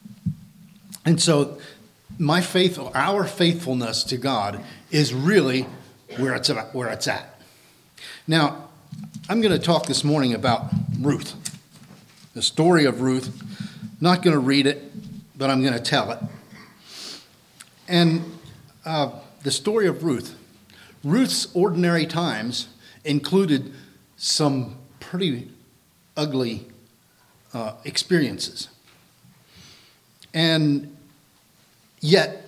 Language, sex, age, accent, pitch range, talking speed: English, male, 50-69, American, 130-170 Hz, 105 wpm